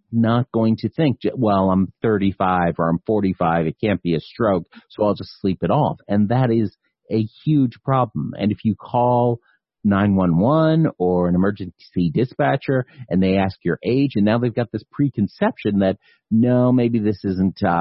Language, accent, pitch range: English, American, 95-115 Hz